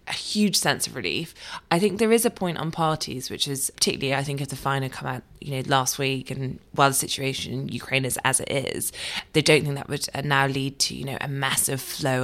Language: English